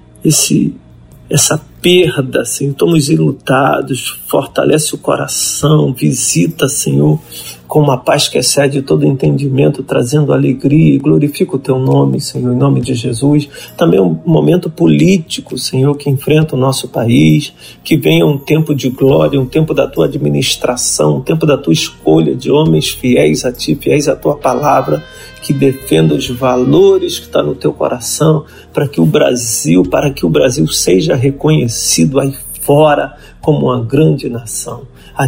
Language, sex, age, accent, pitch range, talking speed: Portuguese, male, 40-59, Brazilian, 115-150 Hz, 155 wpm